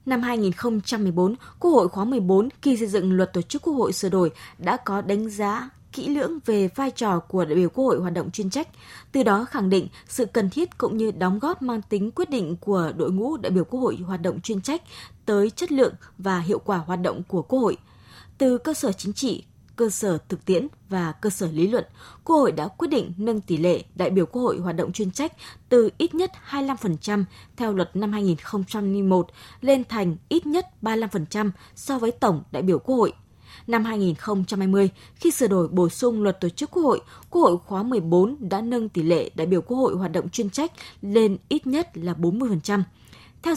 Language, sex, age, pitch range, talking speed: Vietnamese, female, 20-39, 185-245 Hz, 215 wpm